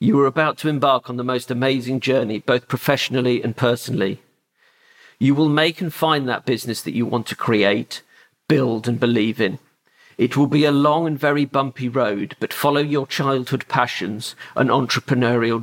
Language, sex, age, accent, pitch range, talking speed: English, male, 50-69, British, 125-145 Hz, 175 wpm